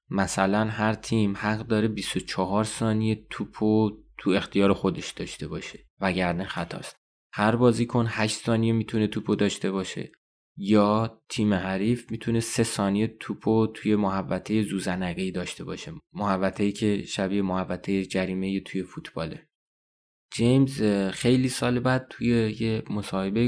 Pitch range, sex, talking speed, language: 100-120 Hz, male, 130 wpm, Persian